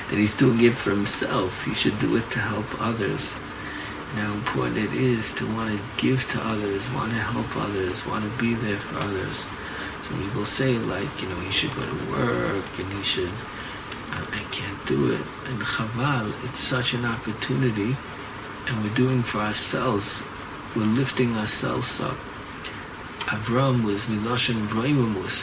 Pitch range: 105-130 Hz